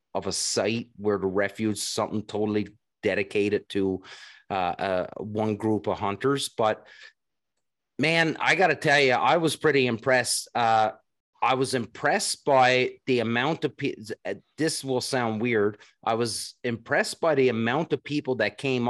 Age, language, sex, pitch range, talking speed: 30-49, English, male, 105-130 Hz, 155 wpm